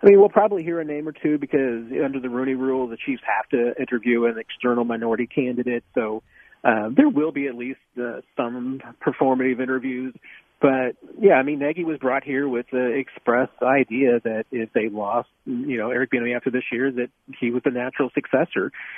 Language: English